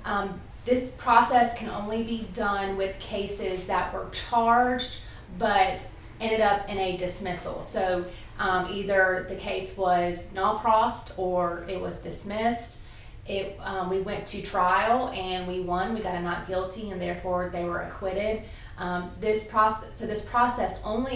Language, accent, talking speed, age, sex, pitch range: English, American, 155 wpm, 30-49, female, 185-230 Hz